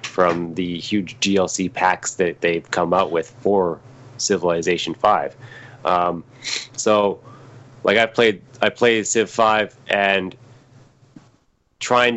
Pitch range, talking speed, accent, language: 95-120 Hz, 120 wpm, American, English